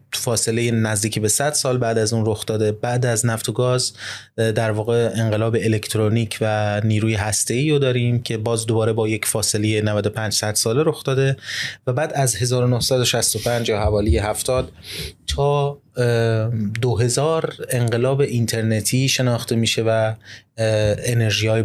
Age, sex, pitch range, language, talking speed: 20-39, male, 110-130 Hz, Persian, 140 wpm